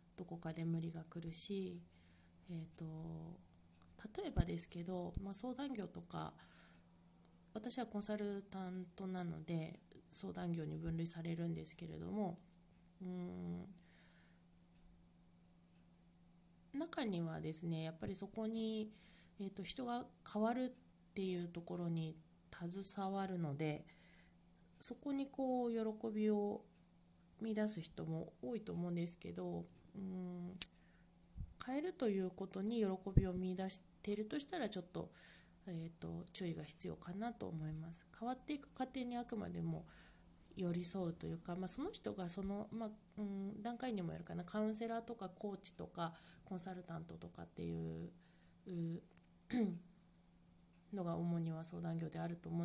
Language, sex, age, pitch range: Japanese, female, 20-39, 160-200 Hz